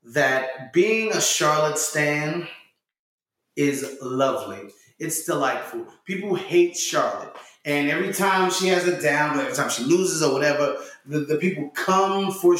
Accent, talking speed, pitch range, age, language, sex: American, 145 wpm, 135-180 Hz, 30-49, English, male